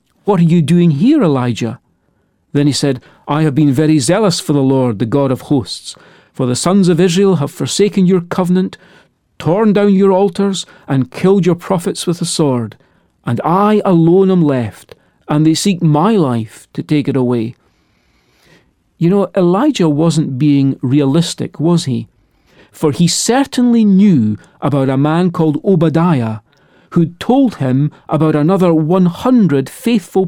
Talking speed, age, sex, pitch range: 155 wpm, 40-59, male, 140-190 Hz